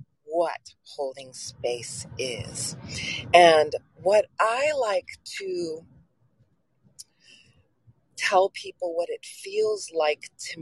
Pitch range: 145-230 Hz